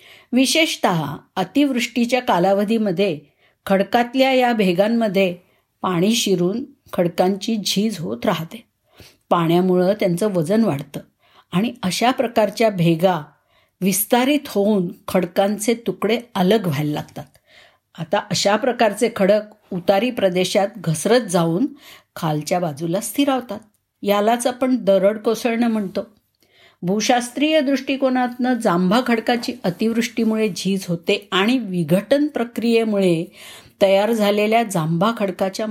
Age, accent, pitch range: 50-69, native, 185-235 Hz